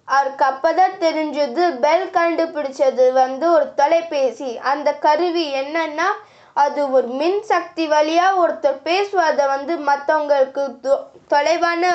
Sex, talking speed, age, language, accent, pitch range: female, 105 wpm, 20-39, Tamil, native, 270-335 Hz